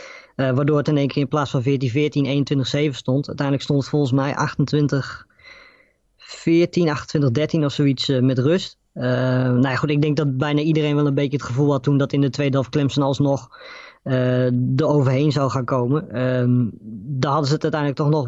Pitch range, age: 130-150 Hz, 20-39